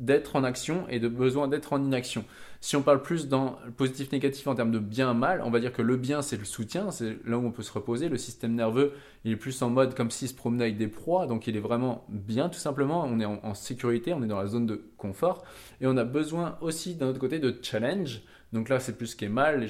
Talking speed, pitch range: 270 wpm, 115-145 Hz